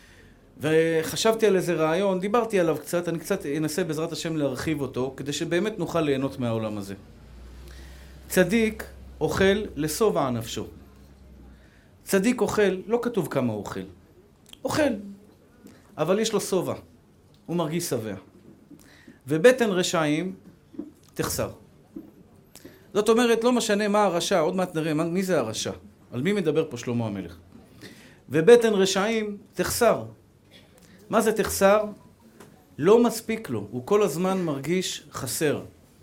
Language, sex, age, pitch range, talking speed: Hebrew, male, 40-59, 120-200 Hz, 120 wpm